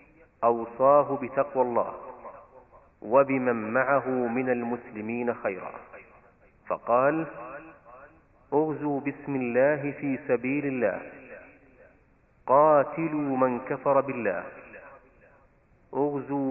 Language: Arabic